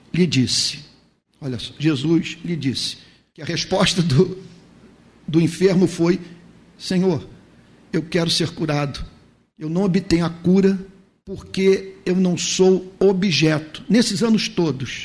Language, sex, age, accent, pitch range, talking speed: Portuguese, male, 50-69, Brazilian, 145-195 Hz, 130 wpm